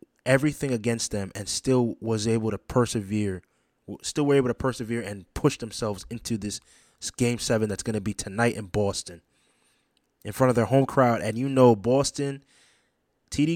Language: English